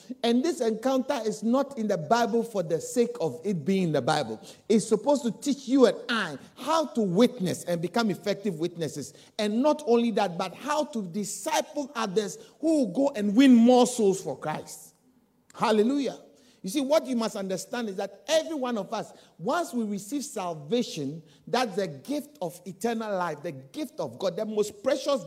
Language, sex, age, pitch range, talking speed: English, male, 50-69, 195-265 Hz, 190 wpm